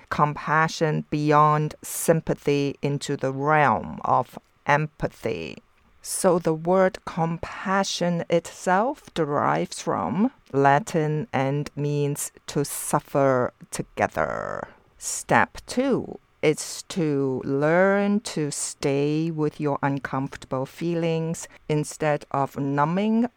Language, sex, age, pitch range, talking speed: English, female, 50-69, 140-170 Hz, 90 wpm